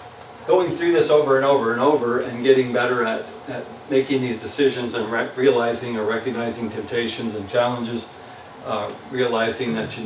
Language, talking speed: English, 165 wpm